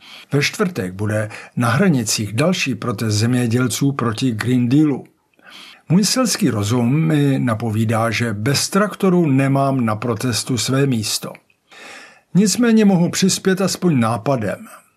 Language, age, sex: Czech, 50-69, male